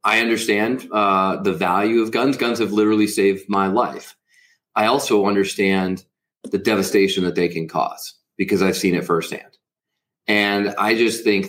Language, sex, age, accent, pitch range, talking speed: English, male, 30-49, American, 100-130 Hz, 160 wpm